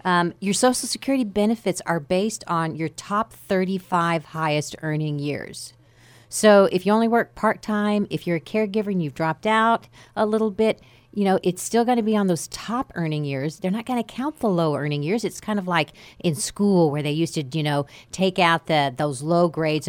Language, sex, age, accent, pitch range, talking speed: English, female, 40-59, American, 155-195 Hz, 215 wpm